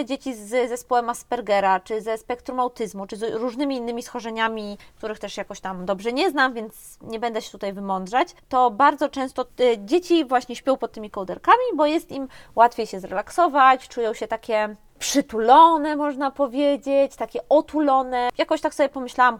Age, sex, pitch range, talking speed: 20-39, female, 220-290 Hz, 165 wpm